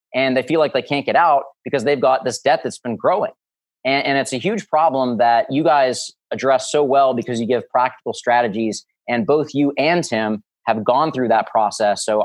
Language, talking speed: English, 215 wpm